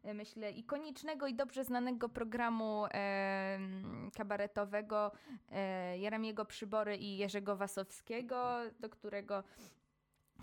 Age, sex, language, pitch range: 20-39, female, Polish, 205-250 Hz